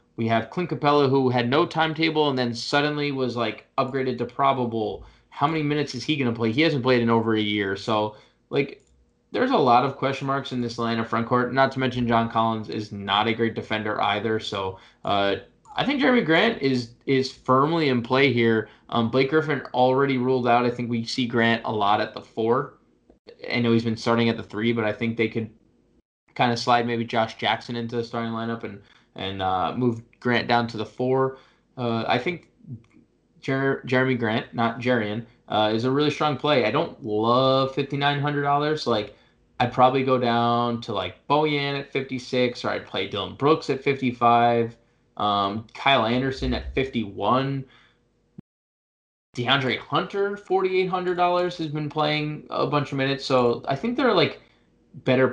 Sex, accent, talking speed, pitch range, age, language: male, American, 190 wpm, 115-140 Hz, 20-39, English